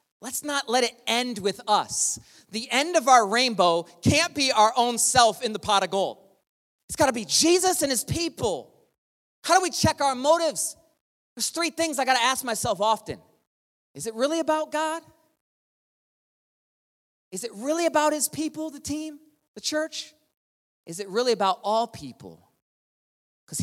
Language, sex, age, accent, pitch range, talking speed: English, male, 30-49, American, 170-255 Hz, 170 wpm